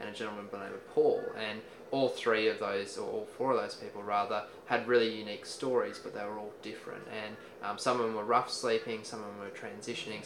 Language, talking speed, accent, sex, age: English, 245 wpm, Australian, male, 20-39